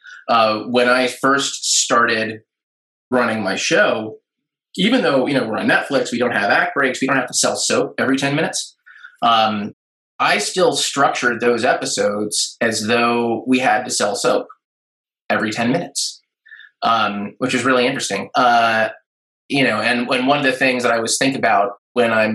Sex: male